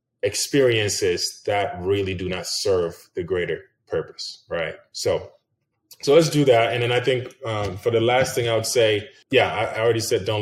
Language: English